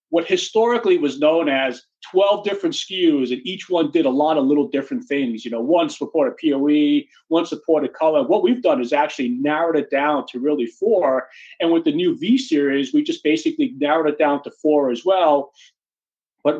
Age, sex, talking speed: 40-59, male, 190 wpm